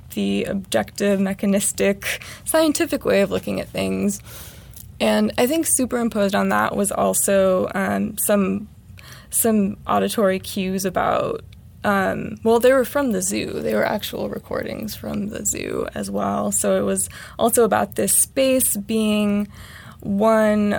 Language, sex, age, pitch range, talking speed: English, female, 20-39, 130-215 Hz, 135 wpm